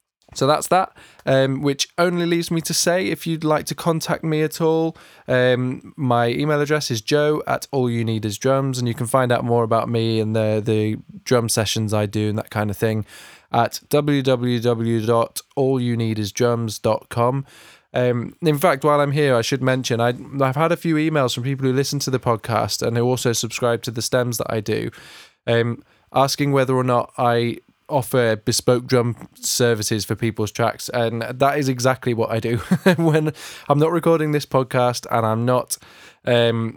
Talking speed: 185 wpm